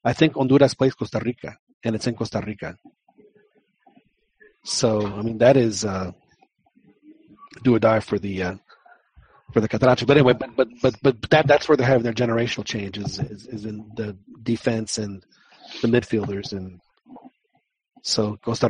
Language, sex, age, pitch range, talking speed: English, male, 40-59, 110-135 Hz, 165 wpm